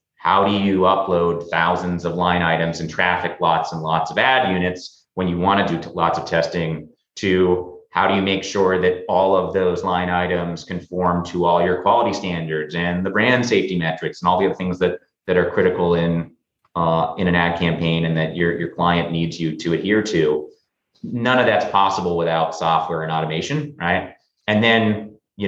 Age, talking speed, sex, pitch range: 30-49, 200 wpm, male, 85-100 Hz